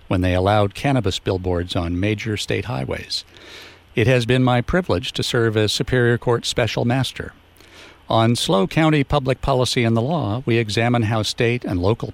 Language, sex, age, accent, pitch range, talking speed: English, male, 60-79, American, 95-125 Hz, 175 wpm